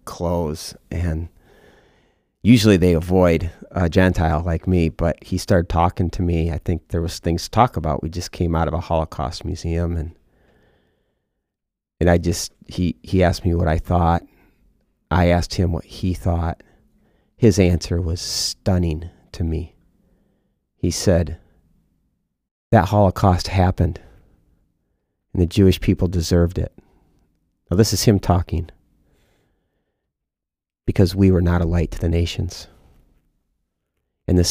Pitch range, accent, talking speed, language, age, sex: 85-100 Hz, American, 140 wpm, English, 30-49, male